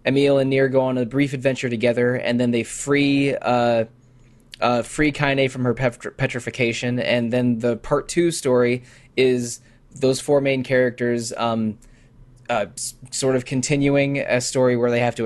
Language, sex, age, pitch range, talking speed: English, male, 20-39, 115-135 Hz, 170 wpm